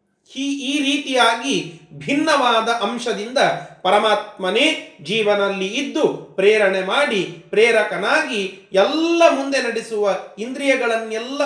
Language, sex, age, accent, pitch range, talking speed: Kannada, male, 30-49, native, 190-260 Hz, 75 wpm